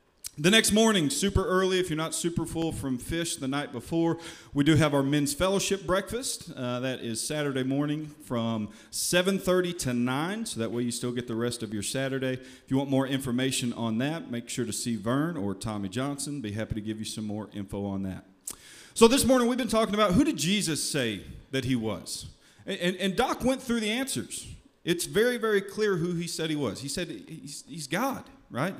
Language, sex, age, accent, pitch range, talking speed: English, male, 40-59, American, 130-195 Hz, 215 wpm